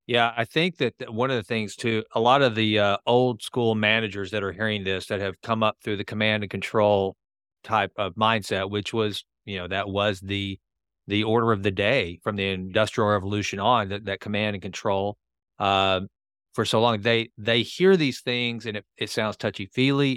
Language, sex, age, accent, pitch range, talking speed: English, male, 40-59, American, 105-130 Hz, 205 wpm